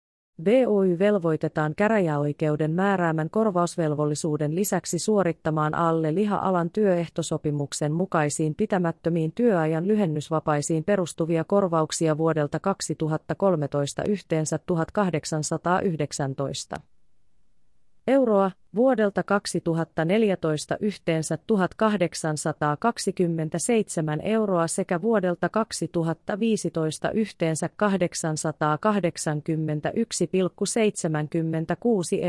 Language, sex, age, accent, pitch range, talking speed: Finnish, female, 30-49, native, 155-200 Hz, 60 wpm